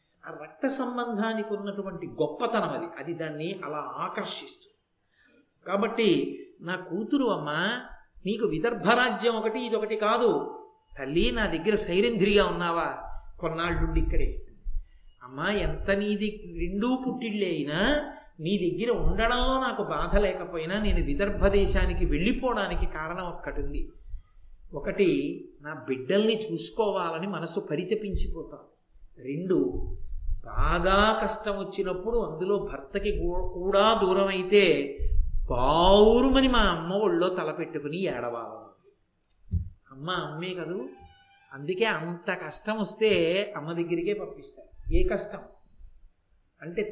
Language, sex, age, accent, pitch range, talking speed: Telugu, male, 50-69, native, 165-215 Hz, 95 wpm